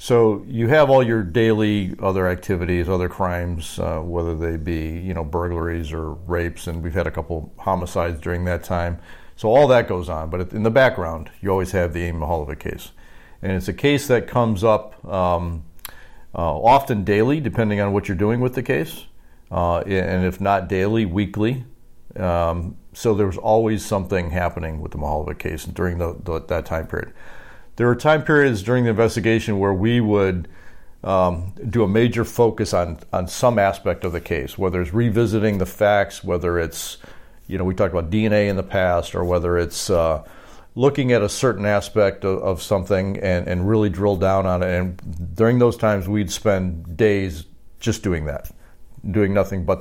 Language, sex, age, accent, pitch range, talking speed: English, male, 40-59, American, 85-110 Hz, 185 wpm